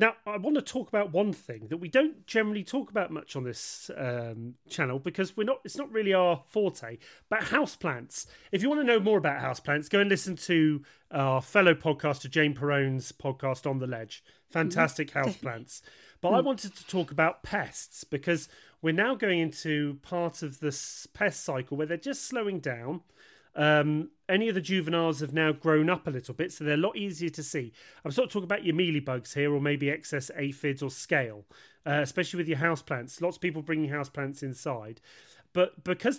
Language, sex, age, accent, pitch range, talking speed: English, male, 30-49, British, 140-180 Hz, 200 wpm